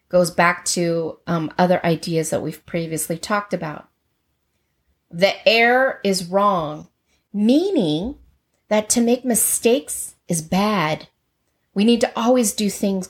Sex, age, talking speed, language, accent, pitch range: female, 30-49, 130 wpm, English, American, 175-235 Hz